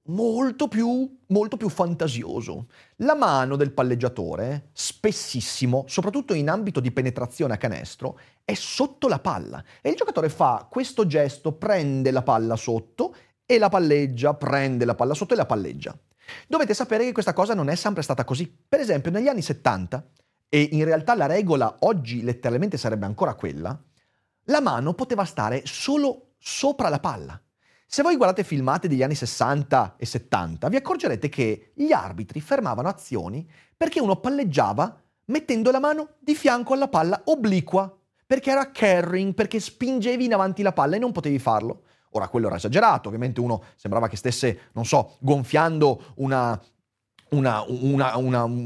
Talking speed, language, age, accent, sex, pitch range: 160 wpm, Italian, 30-49, native, male, 125-210 Hz